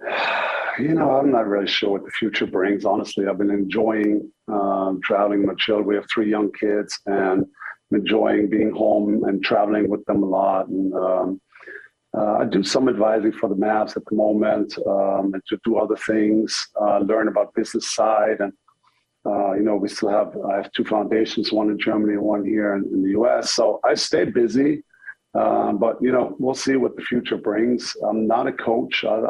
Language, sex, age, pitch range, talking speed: English, male, 50-69, 100-110 Hz, 200 wpm